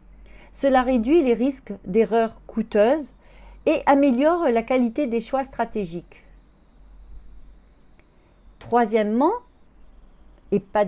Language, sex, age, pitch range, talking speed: French, female, 40-59, 205-270 Hz, 90 wpm